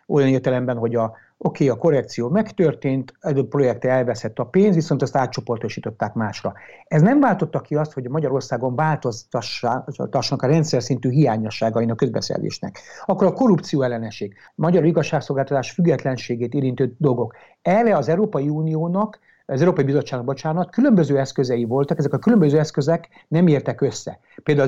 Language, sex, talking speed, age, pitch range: Hungarian, male, 150 wpm, 60-79, 125-165 Hz